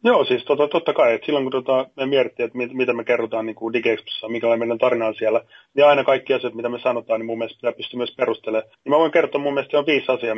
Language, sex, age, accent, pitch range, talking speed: Finnish, male, 30-49, native, 115-130 Hz, 270 wpm